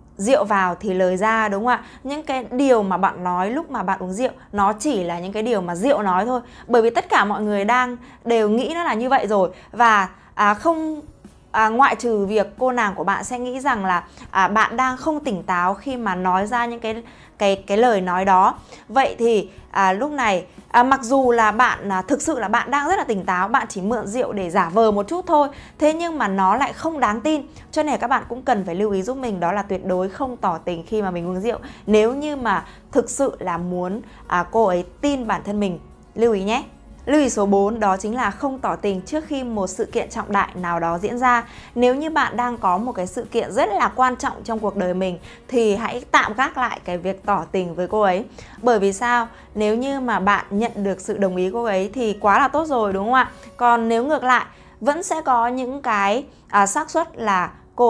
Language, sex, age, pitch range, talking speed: Vietnamese, female, 20-39, 195-255 Hz, 250 wpm